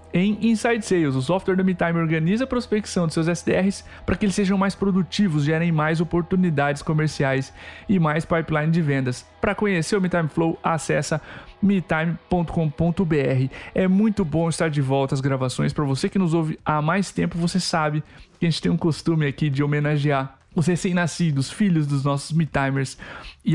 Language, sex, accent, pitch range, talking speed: Portuguese, male, Brazilian, 150-185 Hz, 175 wpm